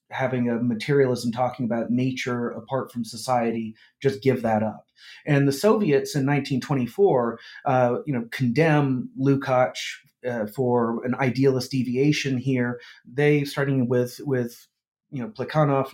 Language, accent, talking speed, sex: English, American, 135 wpm, male